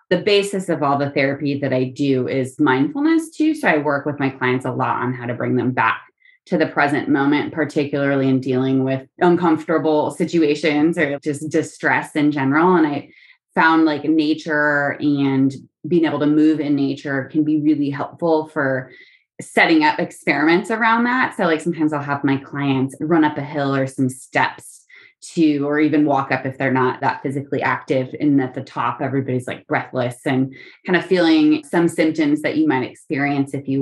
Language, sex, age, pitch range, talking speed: English, female, 20-39, 135-165 Hz, 190 wpm